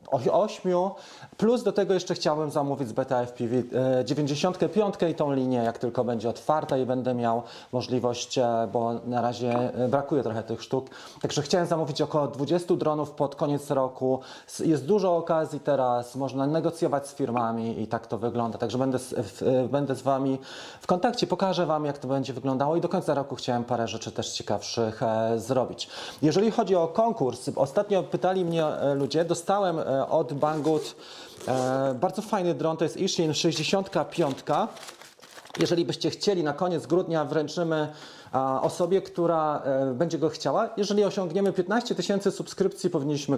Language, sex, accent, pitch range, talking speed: Polish, male, native, 130-170 Hz, 150 wpm